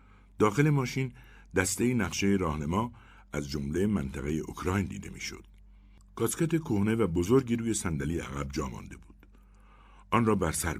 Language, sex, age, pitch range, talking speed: Persian, male, 60-79, 80-115 Hz, 135 wpm